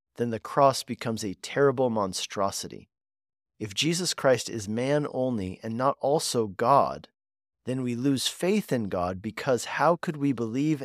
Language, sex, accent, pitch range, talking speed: English, male, American, 100-135 Hz, 155 wpm